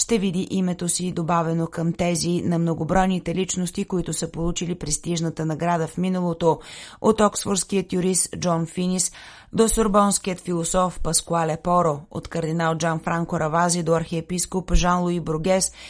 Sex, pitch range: female, 165-185 Hz